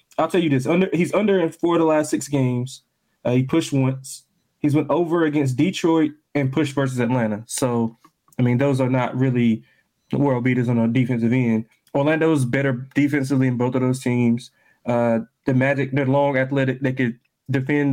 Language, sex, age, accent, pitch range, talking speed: English, male, 20-39, American, 125-145 Hz, 185 wpm